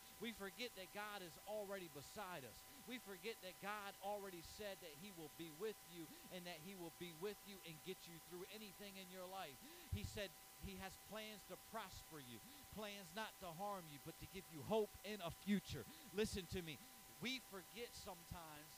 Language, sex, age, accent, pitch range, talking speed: English, male, 40-59, American, 170-215 Hz, 200 wpm